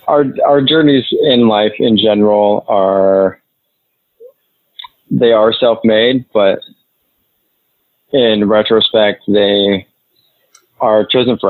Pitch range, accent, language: 95-110 Hz, American, English